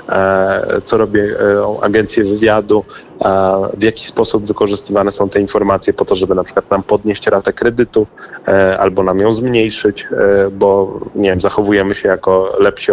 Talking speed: 145 wpm